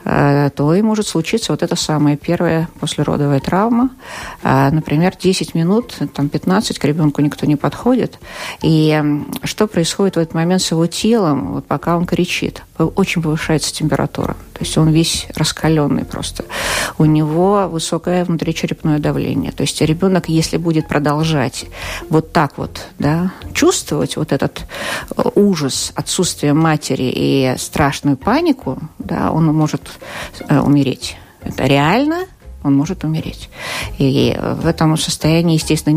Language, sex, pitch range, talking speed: Russian, female, 150-190 Hz, 135 wpm